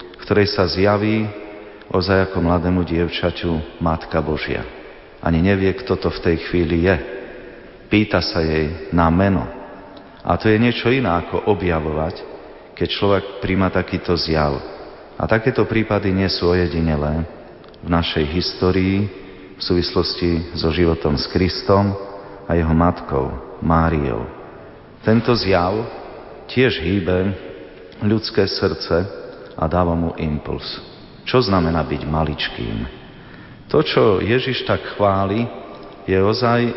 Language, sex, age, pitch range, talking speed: Slovak, male, 40-59, 85-100 Hz, 120 wpm